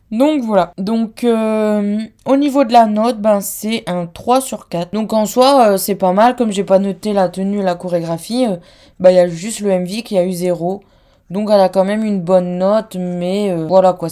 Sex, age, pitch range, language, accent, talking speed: female, 20-39, 180-235 Hz, French, French, 235 wpm